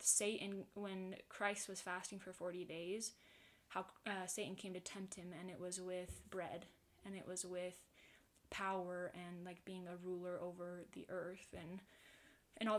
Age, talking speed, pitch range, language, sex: 20-39, 170 wpm, 180-205 Hz, English, female